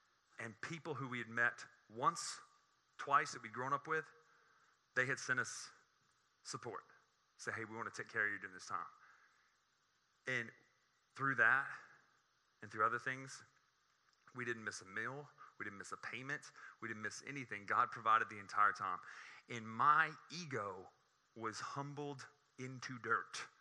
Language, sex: English, male